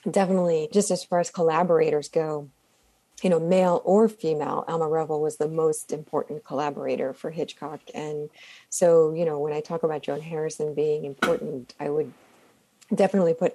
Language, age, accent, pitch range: English, 30-49, American, 160-210 Hz